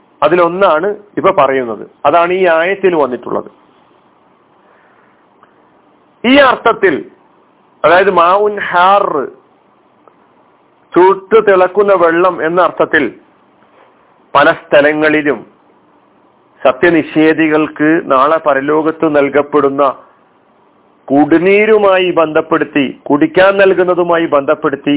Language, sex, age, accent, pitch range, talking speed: Malayalam, male, 40-59, native, 145-190 Hz, 60 wpm